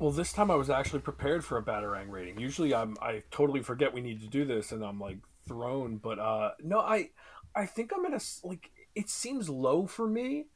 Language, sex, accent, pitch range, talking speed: English, male, American, 110-170 Hz, 225 wpm